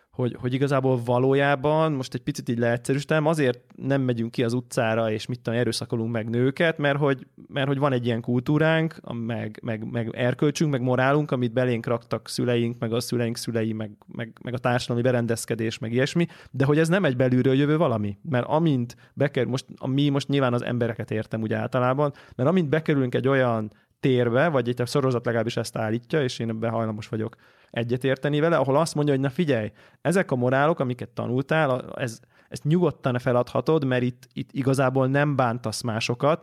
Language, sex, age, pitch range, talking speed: Hungarian, male, 20-39, 120-140 Hz, 185 wpm